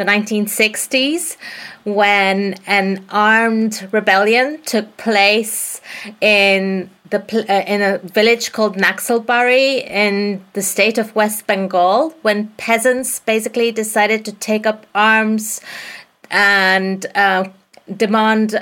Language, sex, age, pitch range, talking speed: English, female, 30-49, 200-230 Hz, 105 wpm